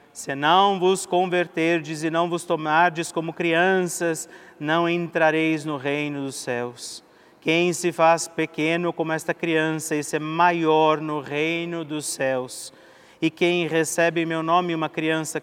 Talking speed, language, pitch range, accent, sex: 150 wpm, Portuguese, 150-175 Hz, Brazilian, male